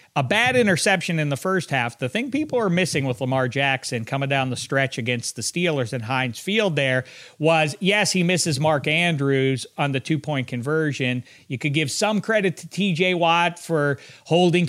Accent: American